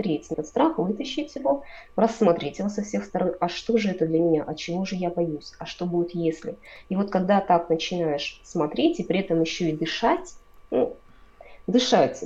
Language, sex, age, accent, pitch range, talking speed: Russian, female, 20-39, native, 155-220 Hz, 185 wpm